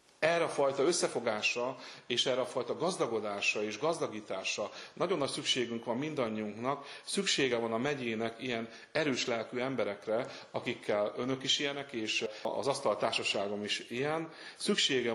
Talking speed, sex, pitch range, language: 135 wpm, male, 110-140 Hz, Hungarian